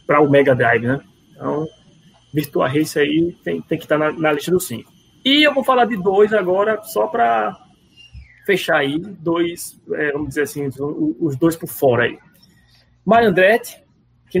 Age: 20-39